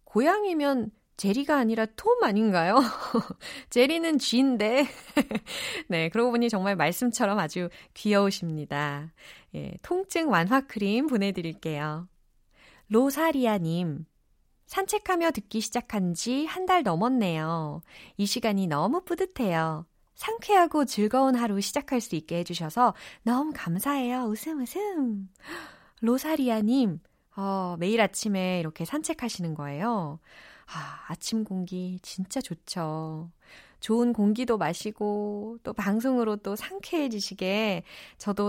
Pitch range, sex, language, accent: 175-260 Hz, female, Korean, native